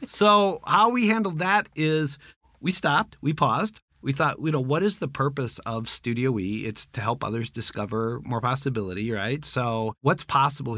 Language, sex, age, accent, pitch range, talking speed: English, male, 40-59, American, 110-145 Hz, 180 wpm